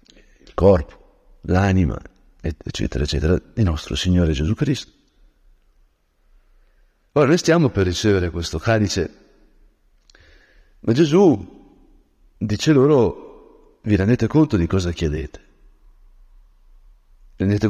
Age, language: 60-79, Italian